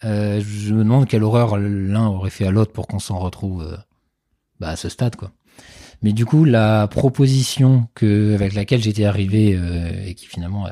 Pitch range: 100-120 Hz